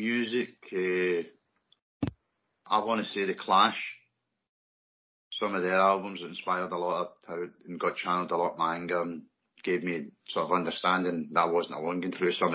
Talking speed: 175 wpm